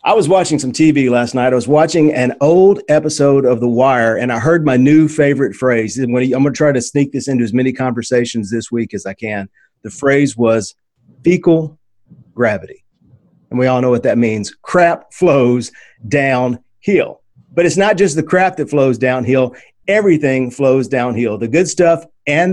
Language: English